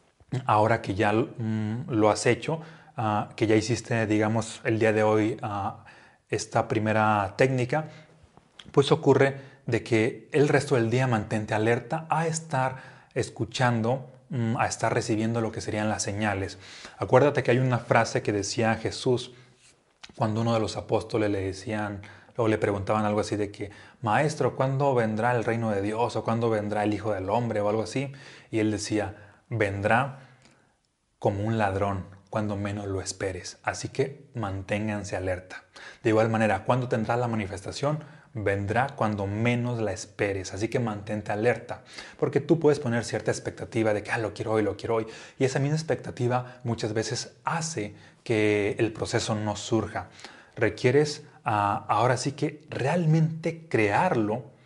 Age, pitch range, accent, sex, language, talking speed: 30-49, 105-130 Hz, Mexican, male, Spanish, 155 wpm